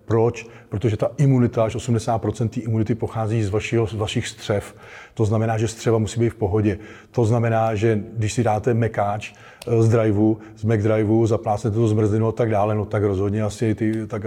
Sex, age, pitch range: male, 30-49, 105-120 Hz